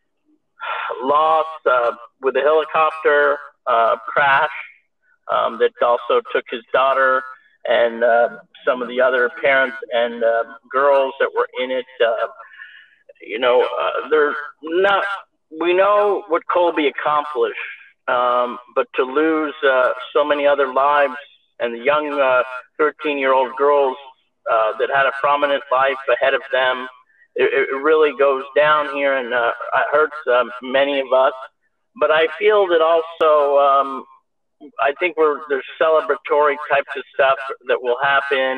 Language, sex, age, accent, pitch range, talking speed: English, male, 50-69, American, 130-190 Hz, 140 wpm